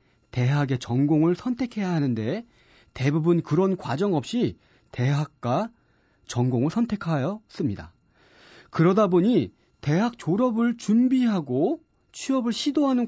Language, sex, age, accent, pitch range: Korean, male, 40-59, native, 140-235 Hz